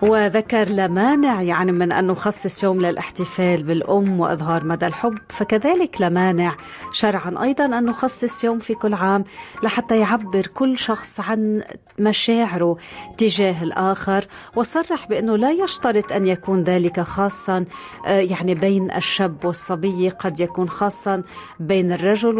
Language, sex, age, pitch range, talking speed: Arabic, female, 40-59, 180-215 Hz, 125 wpm